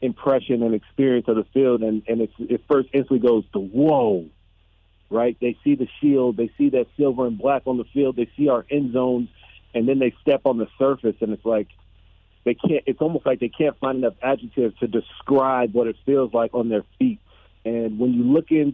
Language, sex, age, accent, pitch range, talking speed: English, male, 50-69, American, 105-130 Hz, 220 wpm